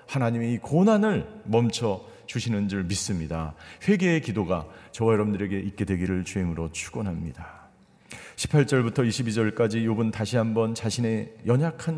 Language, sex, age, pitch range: Korean, male, 40-59, 110-165 Hz